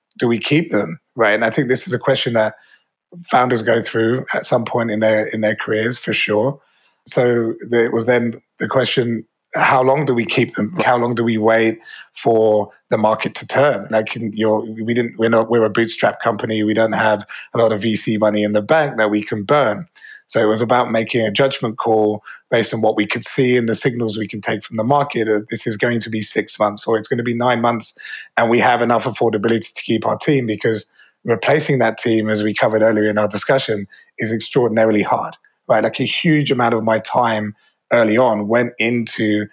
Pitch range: 110-120 Hz